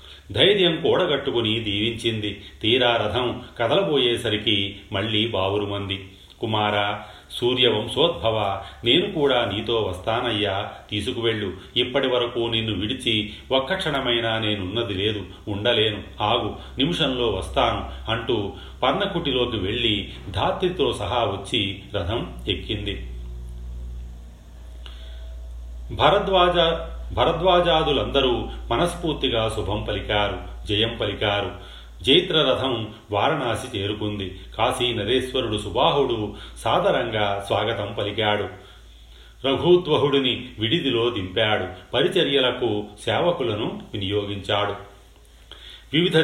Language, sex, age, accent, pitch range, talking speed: Telugu, male, 40-59, native, 100-125 Hz, 75 wpm